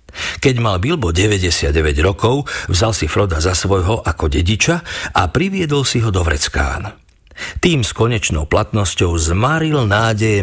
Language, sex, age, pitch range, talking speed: Slovak, male, 50-69, 85-115 Hz, 140 wpm